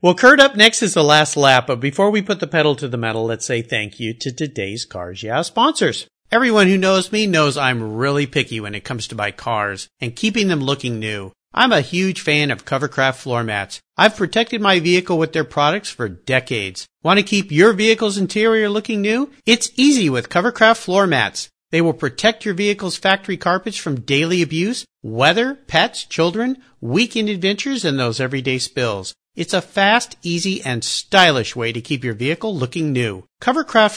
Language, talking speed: English, 195 wpm